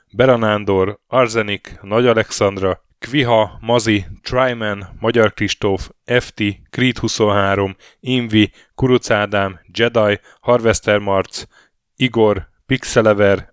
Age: 10-29